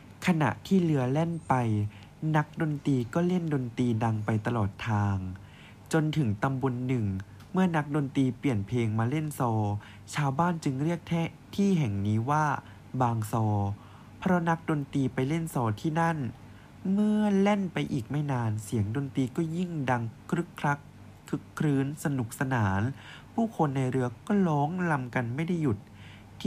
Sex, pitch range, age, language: male, 110-150 Hz, 20-39, Thai